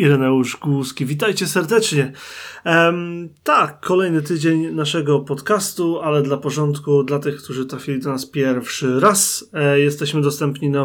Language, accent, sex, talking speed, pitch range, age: Polish, native, male, 140 wpm, 140-155 Hz, 20-39